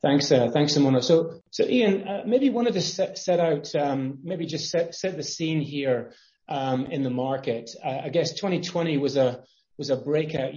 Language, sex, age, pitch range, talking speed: English, male, 30-49, 130-160 Hz, 200 wpm